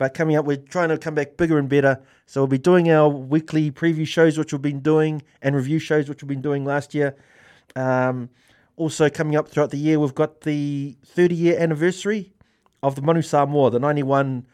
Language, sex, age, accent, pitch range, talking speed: English, male, 30-49, Australian, 120-155 Hz, 205 wpm